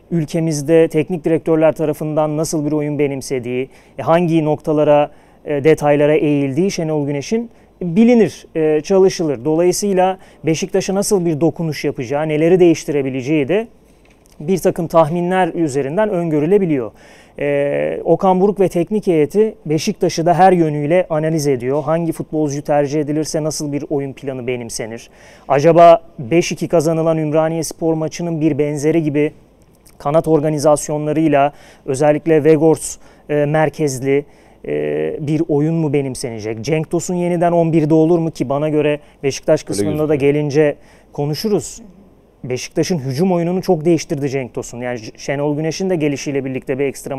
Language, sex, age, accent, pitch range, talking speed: Turkish, male, 30-49, native, 145-175 Hz, 125 wpm